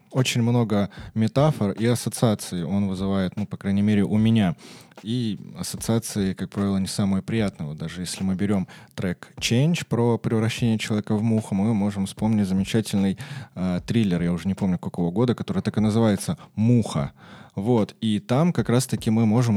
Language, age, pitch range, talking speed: Russian, 20-39, 100-120 Hz, 170 wpm